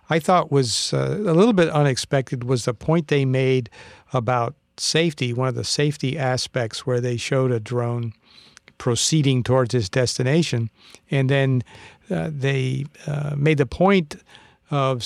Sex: male